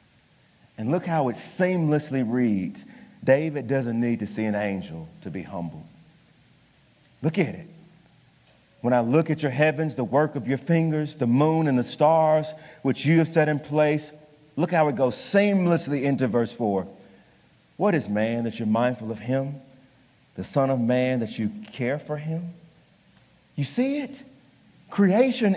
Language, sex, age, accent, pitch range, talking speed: English, male, 40-59, American, 145-225 Hz, 165 wpm